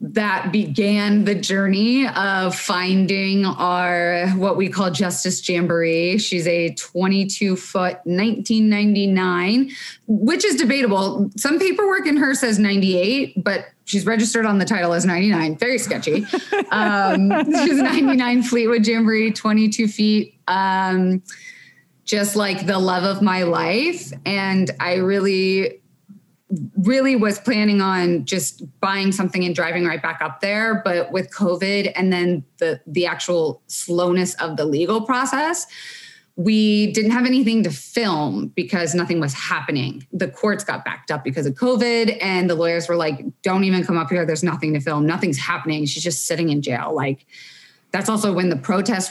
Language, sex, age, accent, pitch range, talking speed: English, female, 20-39, American, 175-220 Hz, 155 wpm